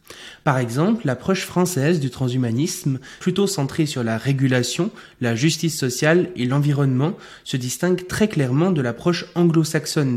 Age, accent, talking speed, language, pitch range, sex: 20-39, French, 135 wpm, French, 125-160 Hz, male